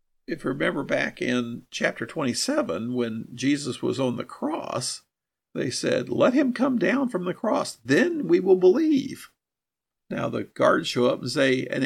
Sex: male